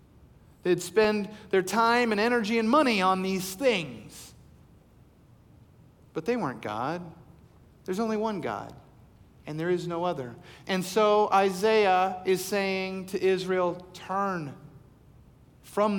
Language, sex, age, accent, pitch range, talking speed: English, male, 40-59, American, 140-185 Hz, 125 wpm